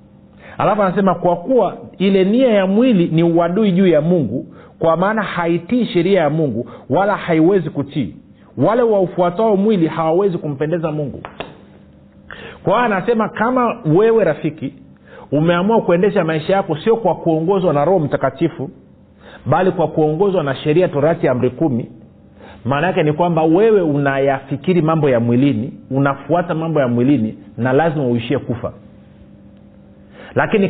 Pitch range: 145-180 Hz